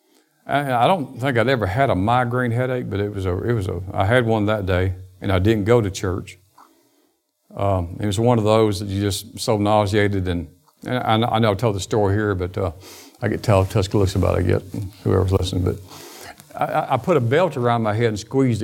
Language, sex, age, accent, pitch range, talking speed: English, male, 50-69, American, 100-125 Hz, 225 wpm